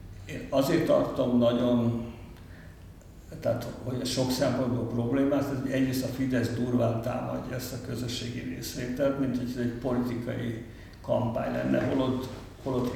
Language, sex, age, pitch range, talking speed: Hungarian, male, 60-79, 110-125 Hz, 125 wpm